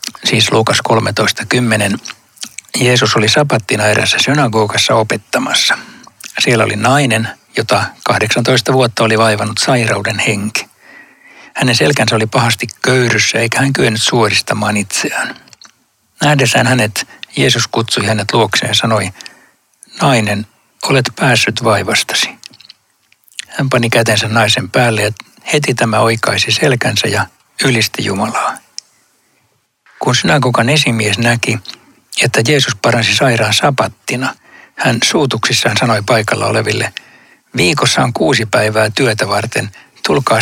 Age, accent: 60-79, native